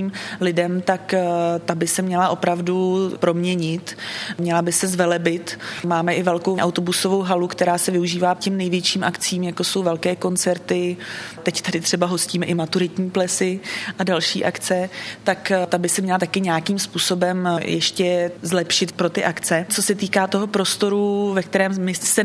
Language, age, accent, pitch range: Czech, 20-39, native, 170-185 Hz